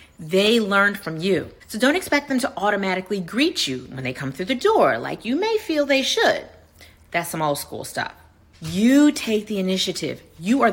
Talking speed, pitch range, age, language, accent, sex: 195 wpm, 175-245 Hz, 40-59, English, American, female